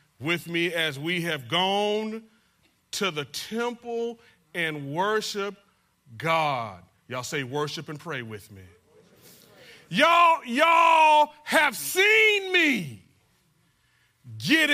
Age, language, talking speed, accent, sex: 40-59, English, 100 wpm, American, male